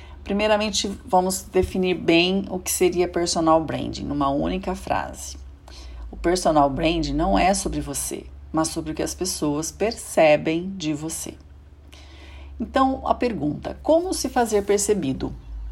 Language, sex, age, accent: Portuguese, female, 40-59, Brazilian